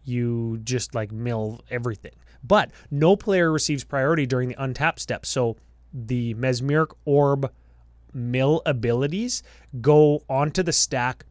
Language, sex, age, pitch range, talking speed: English, male, 20-39, 115-150 Hz, 125 wpm